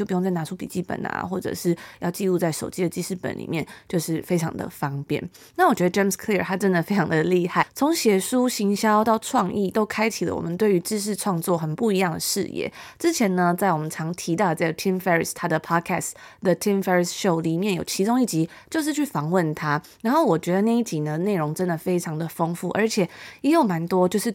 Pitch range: 170-215 Hz